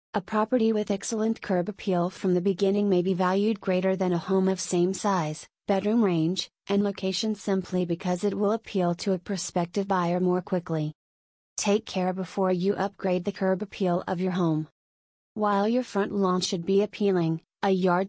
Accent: American